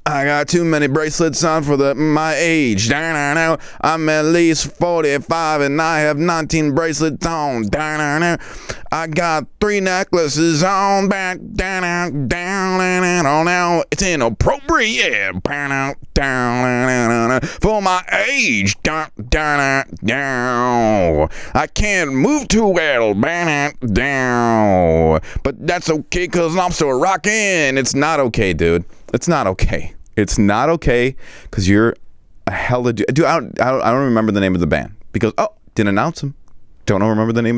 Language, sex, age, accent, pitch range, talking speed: English, male, 30-49, American, 105-160 Hz, 125 wpm